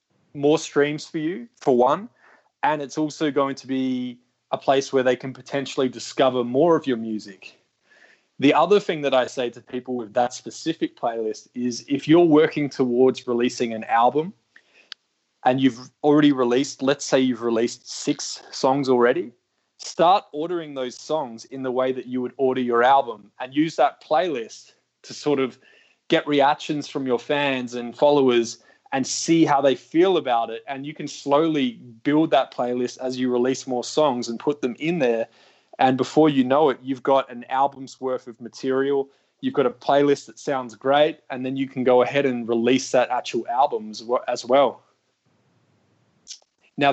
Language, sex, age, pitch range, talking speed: English, male, 20-39, 125-145 Hz, 175 wpm